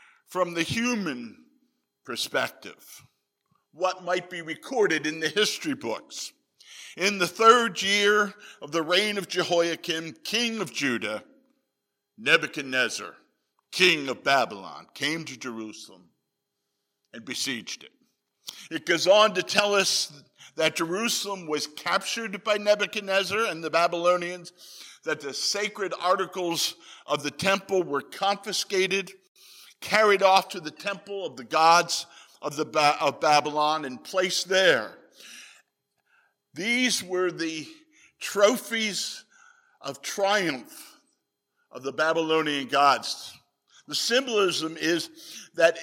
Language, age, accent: English, 50-69, American